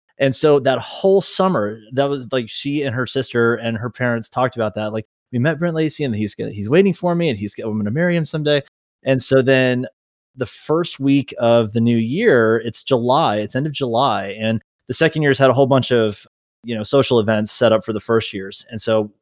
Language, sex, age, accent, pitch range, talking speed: English, male, 30-49, American, 110-130 Hz, 230 wpm